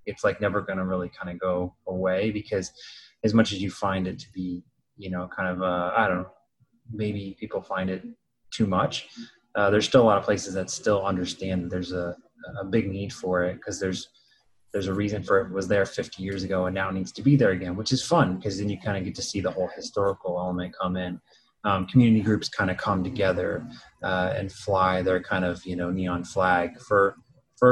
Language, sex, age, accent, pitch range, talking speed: English, male, 20-39, American, 90-105 Hz, 235 wpm